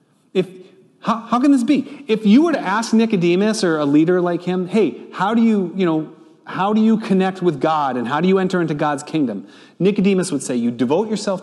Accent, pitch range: American, 160-225 Hz